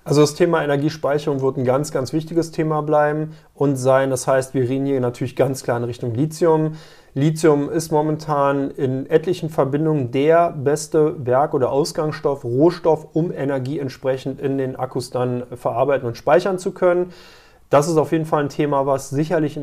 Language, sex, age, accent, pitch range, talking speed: German, male, 30-49, German, 135-165 Hz, 175 wpm